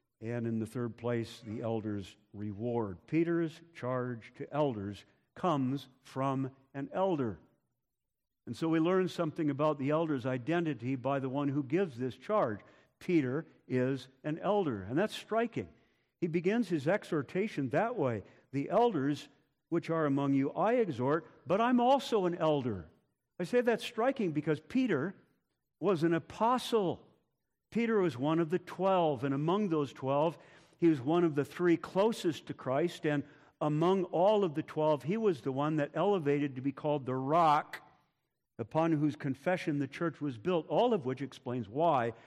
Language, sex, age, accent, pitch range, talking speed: English, male, 50-69, American, 130-170 Hz, 165 wpm